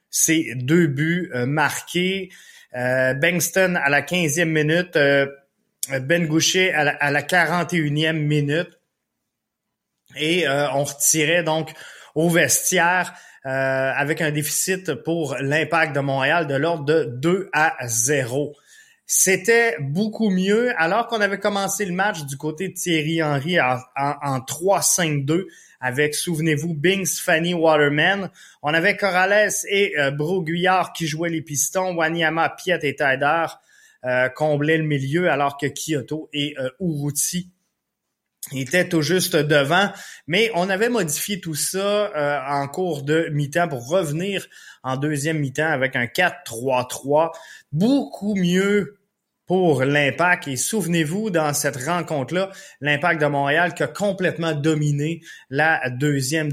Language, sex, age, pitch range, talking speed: French, male, 20-39, 145-180 Hz, 135 wpm